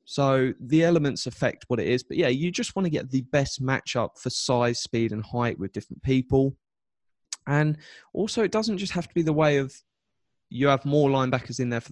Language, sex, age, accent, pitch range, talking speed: English, male, 20-39, British, 120-140 Hz, 215 wpm